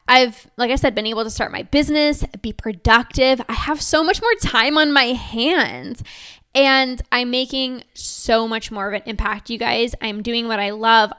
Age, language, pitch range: 10-29, English, 225-275 Hz